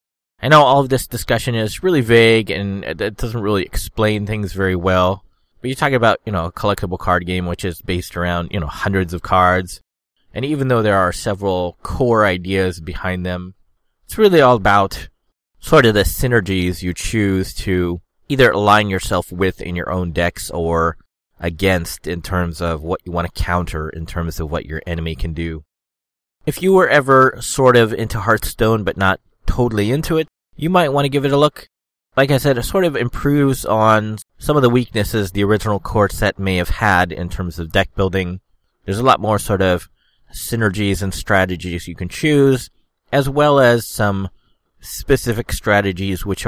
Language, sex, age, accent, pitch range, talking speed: English, male, 30-49, American, 90-120 Hz, 190 wpm